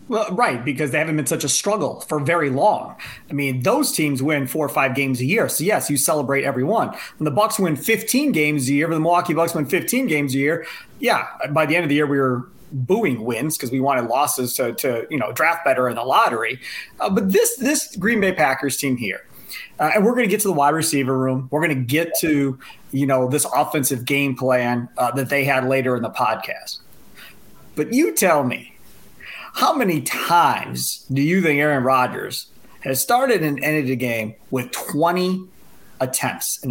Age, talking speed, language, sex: 30-49, 215 wpm, English, male